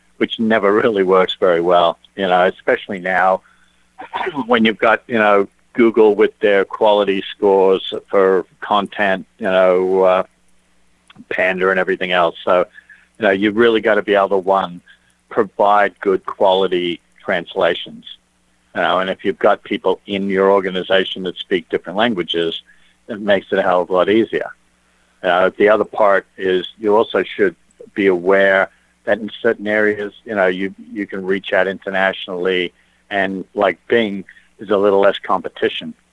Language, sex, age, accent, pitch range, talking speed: English, male, 50-69, American, 90-100 Hz, 160 wpm